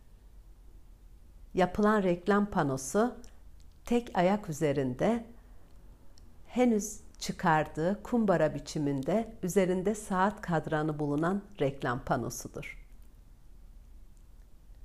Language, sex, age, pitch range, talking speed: Turkish, female, 60-79, 135-200 Hz, 65 wpm